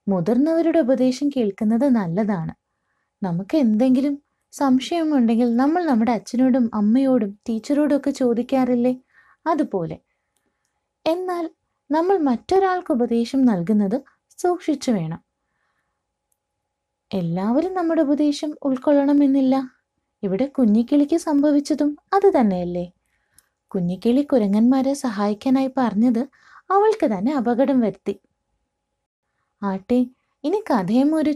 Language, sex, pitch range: Malayalam, female, 225-295 Hz